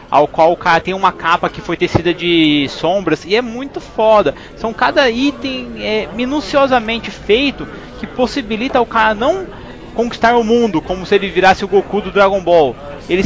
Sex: male